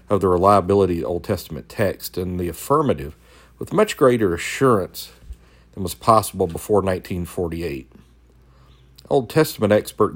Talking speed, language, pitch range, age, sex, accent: 135 wpm, English, 75-105 Hz, 50-69, male, American